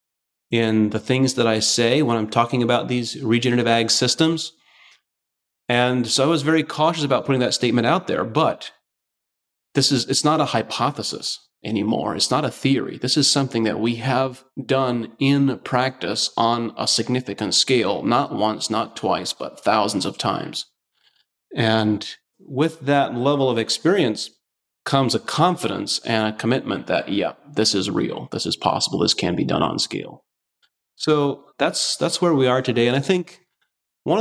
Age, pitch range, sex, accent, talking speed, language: 30-49, 110-135 Hz, male, American, 170 wpm, English